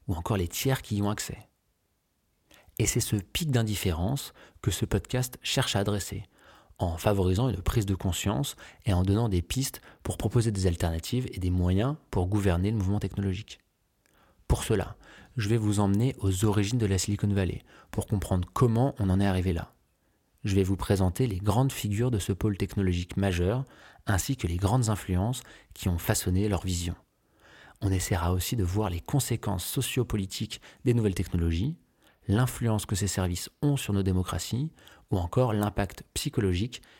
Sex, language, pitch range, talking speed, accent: male, French, 95-115 Hz, 175 wpm, French